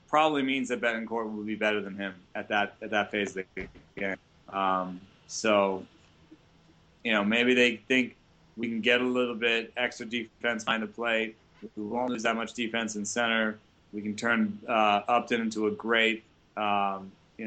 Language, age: English, 20-39